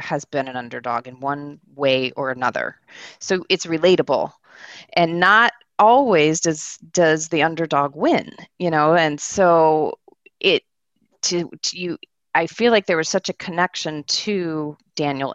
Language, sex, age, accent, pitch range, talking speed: English, female, 30-49, American, 140-170 Hz, 150 wpm